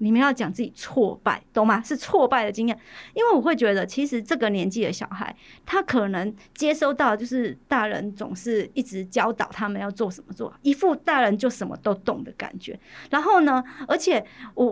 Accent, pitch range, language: American, 220-290 Hz, Chinese